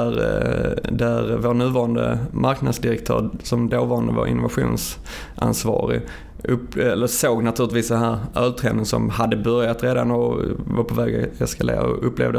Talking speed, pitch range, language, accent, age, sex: 135 wpm, 115-125 Hz, Swedish, native, 20-39, male